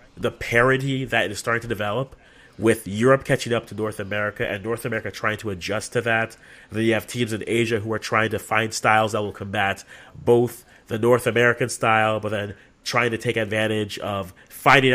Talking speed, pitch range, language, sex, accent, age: 200 wpm, 100-120 Hz, English, male, American, 30-49